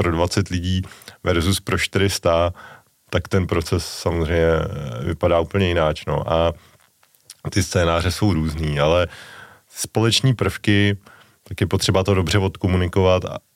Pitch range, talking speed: 80-100 Hz, 120 wpm